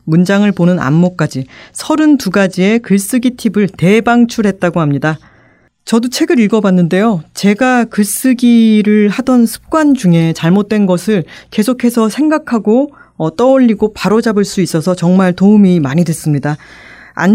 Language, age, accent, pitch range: Korean, 40-59, native, 175-235 Hz